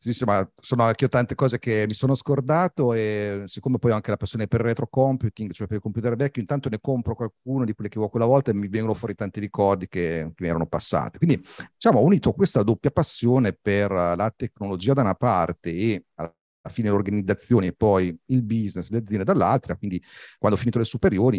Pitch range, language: 90-115 Hz, Italian